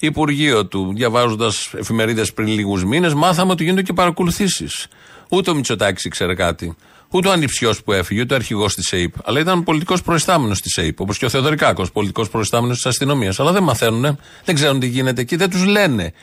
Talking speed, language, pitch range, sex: 190 wpm, Greek, 110-155 Hz, male